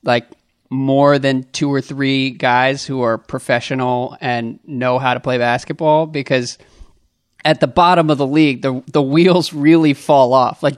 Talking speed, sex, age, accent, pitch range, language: 165 wpm, male, 20-39, American, 135-160 Hz, English